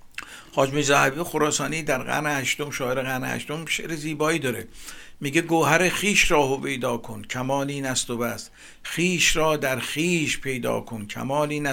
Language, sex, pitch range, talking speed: Persian, male, 135-170 Hz, 145 wpm